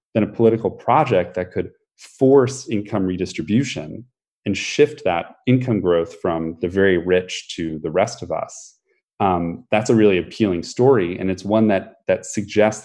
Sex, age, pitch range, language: male, 30-49, 85-110 Hz, English